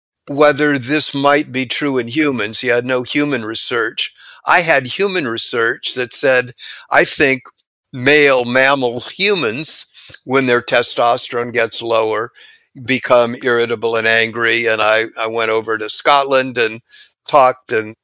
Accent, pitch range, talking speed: American, 115-135 Hz, 140 wpm